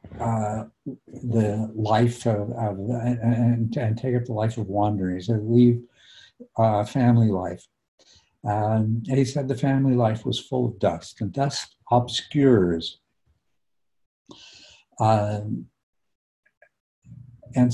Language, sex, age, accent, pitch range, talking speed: English, male, 60-79, American, 105-130 Hz, 115 wpm